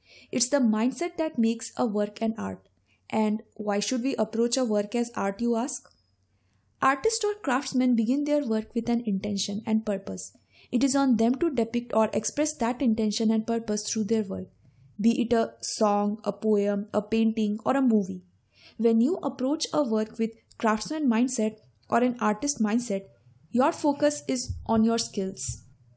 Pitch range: 205-260 Hz